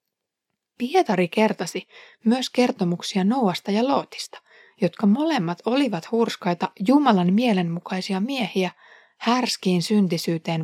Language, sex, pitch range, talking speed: Finnish, female, 180-240 Hz, 90 wpm